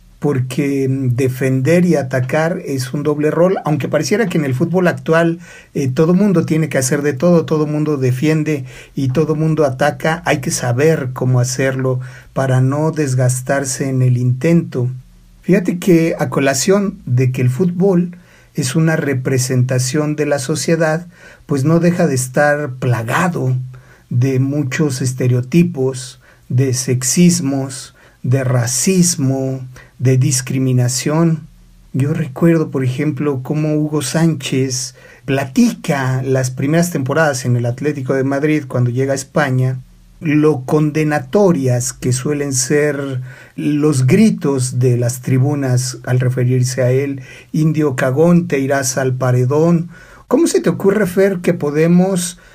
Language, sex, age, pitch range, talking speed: Spanish, male, 50-69, 130-160 Hz, 135 wpm